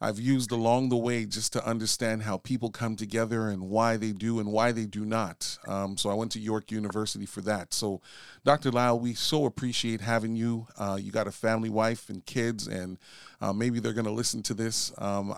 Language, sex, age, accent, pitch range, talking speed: English, male, 40-59, American, 105-120 Hz, 215 wpm